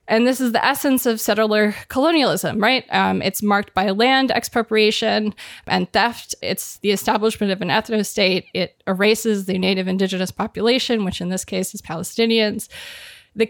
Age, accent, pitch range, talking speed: 20-39, American, 195-235 Hz, 160 wpm